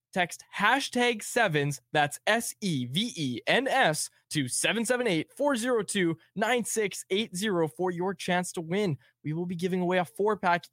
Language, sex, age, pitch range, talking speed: English, male, 20-39, 135-200 Hz, 105 wpm